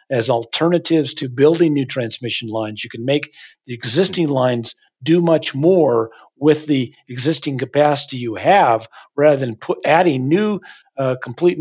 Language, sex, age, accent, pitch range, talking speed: English, male, 50-69, American, 125-155 Hz, 145 wpm